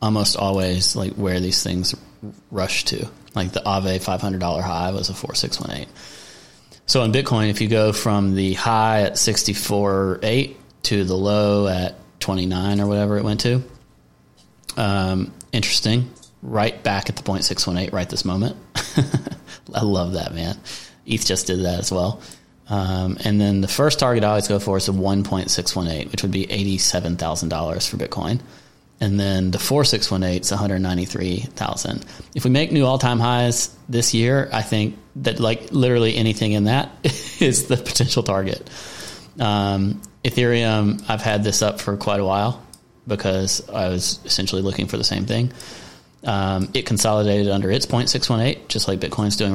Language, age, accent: English, 30-49, American